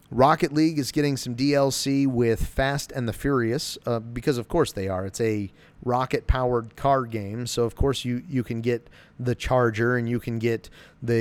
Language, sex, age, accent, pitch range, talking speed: English, male, 30-49, American, 110-135 Hz, 195 wpm